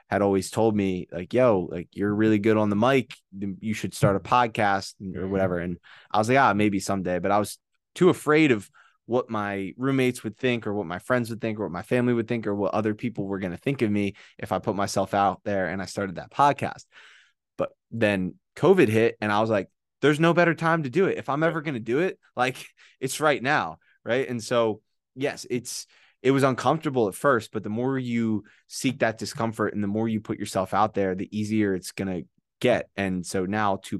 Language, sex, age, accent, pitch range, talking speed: English, male, 20-39, American, 95-115 Hz, 235 wpm